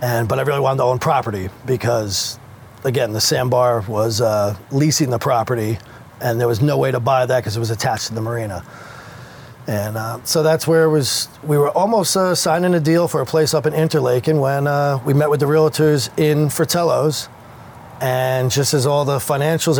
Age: 40-59